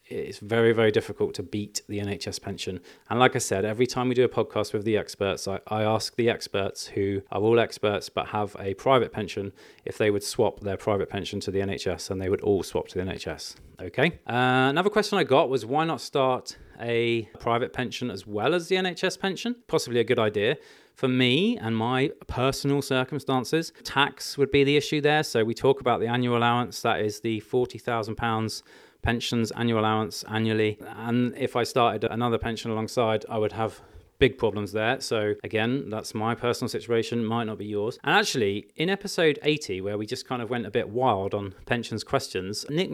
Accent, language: British, English